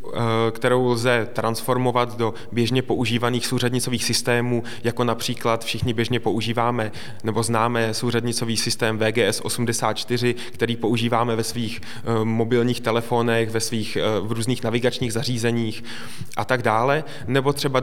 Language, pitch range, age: Czech, 115-130 Hz, 20-39